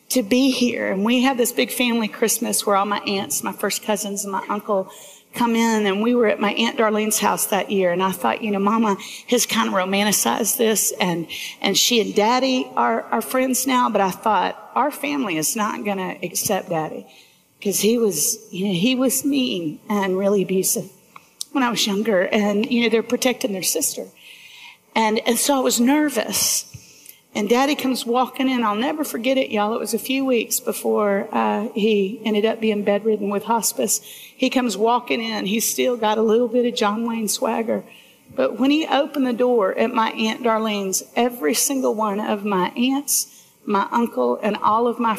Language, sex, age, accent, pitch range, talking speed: English, female, 40-59, American, 205-250 Hz, 200 wpm